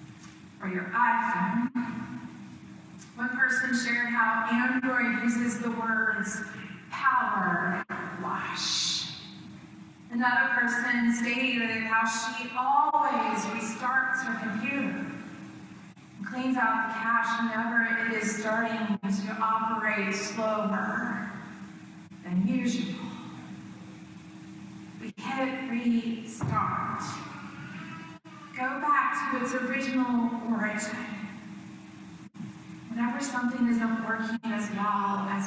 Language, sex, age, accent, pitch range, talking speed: English, female, 30-49, American, 210-245 Hz, 85 wpm